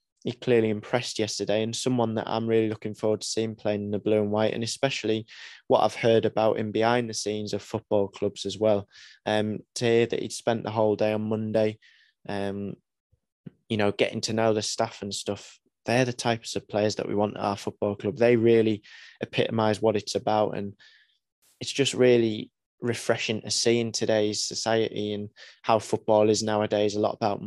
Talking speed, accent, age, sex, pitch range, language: 200 wpm, British, 20-39, male, 105-115 Hz, English